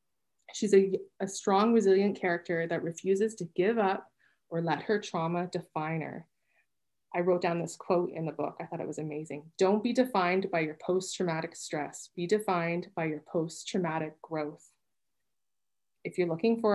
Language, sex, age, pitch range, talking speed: English, female, 20-39, 175-220 Hz, 170 wpm